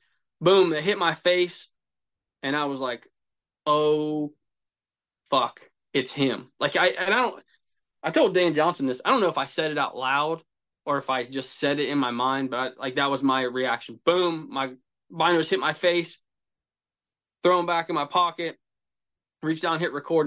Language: English